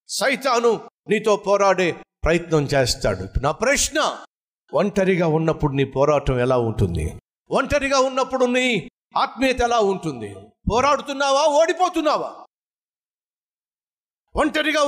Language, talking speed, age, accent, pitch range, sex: Telugu, 90 wpm, 50-69, native, 170-280 Hz, male